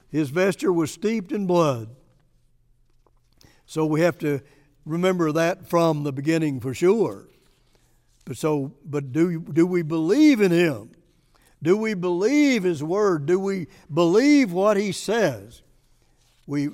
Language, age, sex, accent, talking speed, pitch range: English, 60-79, male, American, 135 wpm, 150-195 Hz